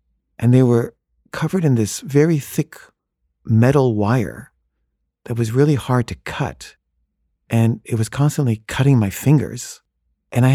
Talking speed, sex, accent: 140 wpm, male, American